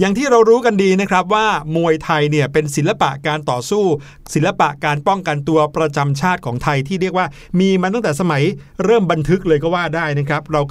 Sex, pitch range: male, 140-180 Hz